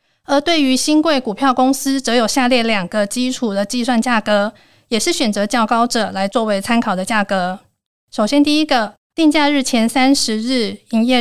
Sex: female